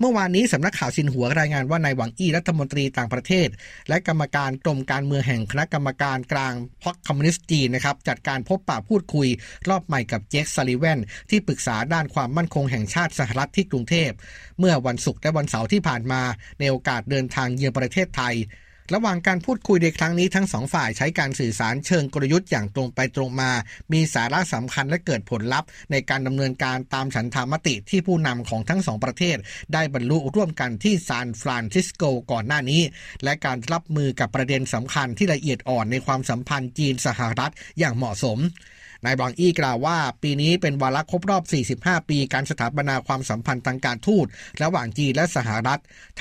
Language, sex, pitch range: Thai, male, 125-165 Hz